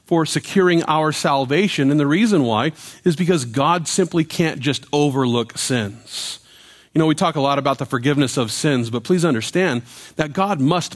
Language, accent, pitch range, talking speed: English, American, 125-175 Hz, 180 wpm